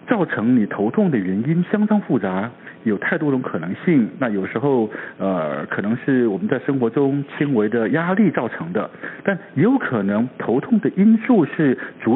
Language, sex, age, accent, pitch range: Chinese, male, 60-79, native, 115-190 Hz